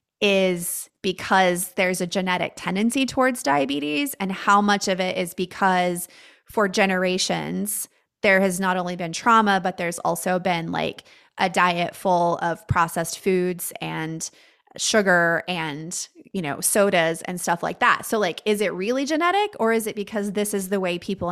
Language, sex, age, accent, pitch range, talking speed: English, female, 20-39, American, 175-205 Hz, 165 wpm